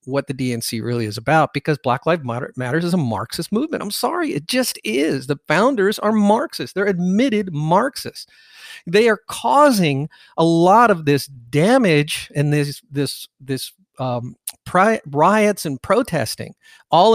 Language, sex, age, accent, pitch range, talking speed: English, male, 50-69, American, 140-195 Hz, 145 wpm